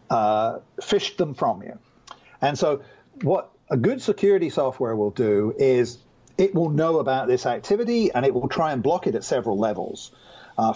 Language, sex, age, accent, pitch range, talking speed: English, male, 50-69, British, 125-180 Hz, 180 wpm